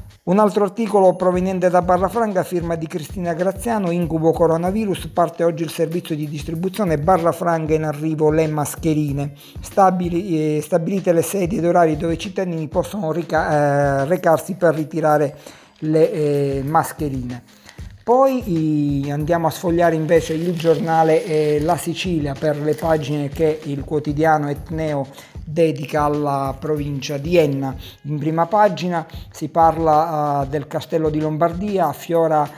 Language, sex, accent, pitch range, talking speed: Italian, male, native, 150-170 Hz, 125 wpm